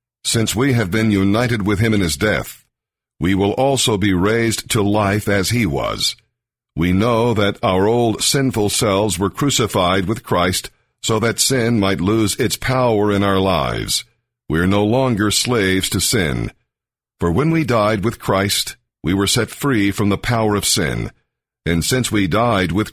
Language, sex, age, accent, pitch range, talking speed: English, male, 50-69, American, 95-120 Hz, 180 wpm